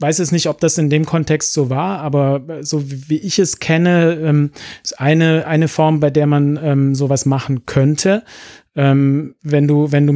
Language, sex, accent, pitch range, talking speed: German, male, German, 135-155 Hz, 195 wpm